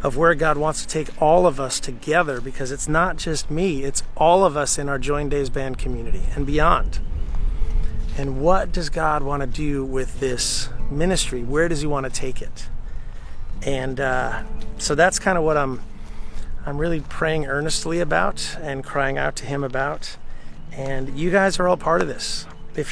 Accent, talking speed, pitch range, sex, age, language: American, 190 wpm, 130-165 Hz, male, 30-49, English